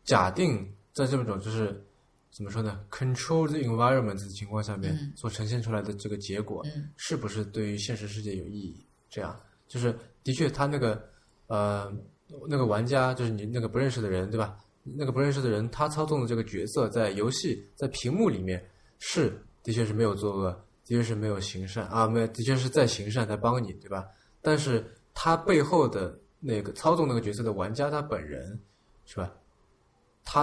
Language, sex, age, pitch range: Chinese, male, 20-39, 100-130 Hz